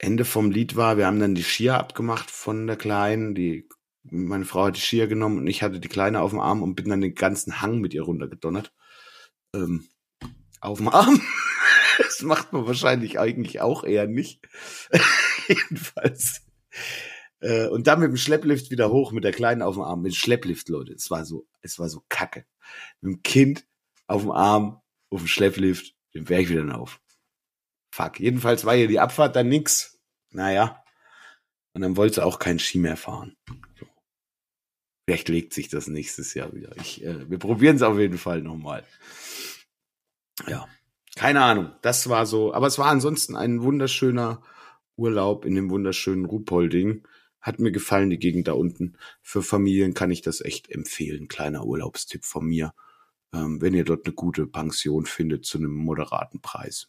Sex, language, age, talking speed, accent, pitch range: male, German, 50-69, 180 wpm, German, 90-115 Hz